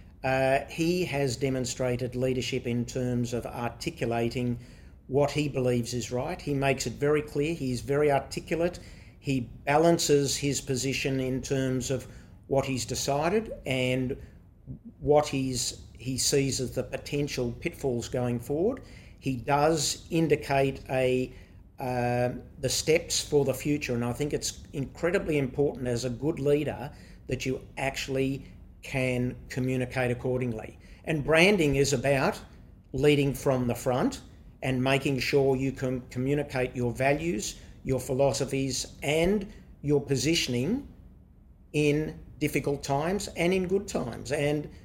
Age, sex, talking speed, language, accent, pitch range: 50-69, male, 130 wpm, English, Australian, 125-145 Hz